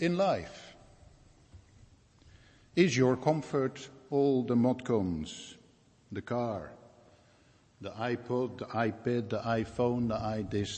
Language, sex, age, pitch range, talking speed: English, male, 60-79, 105-125 Hz, 100 wpm